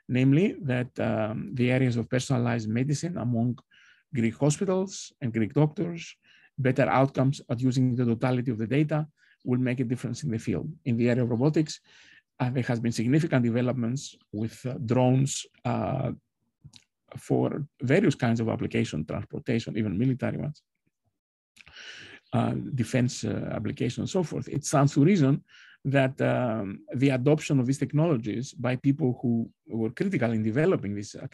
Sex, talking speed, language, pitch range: male, 155 wpm, English, 115-135 Hz